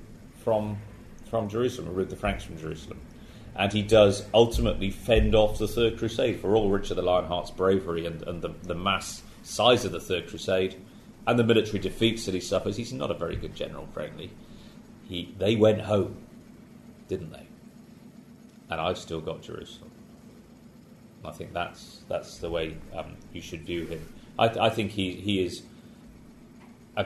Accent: British